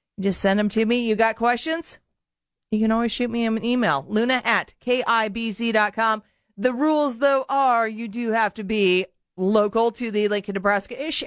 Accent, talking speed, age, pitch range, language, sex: American, 180 wpm, 40-59, 210-260 Hz, English, female